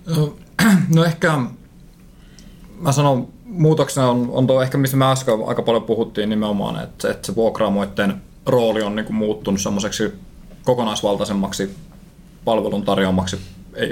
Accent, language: native, Finnish